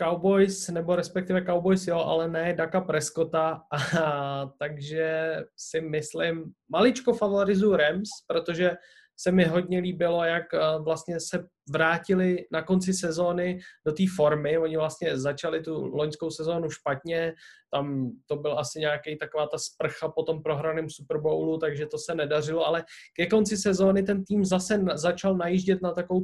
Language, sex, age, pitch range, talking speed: Czech, male, 20-39, 155-175 Hz, 150 wpm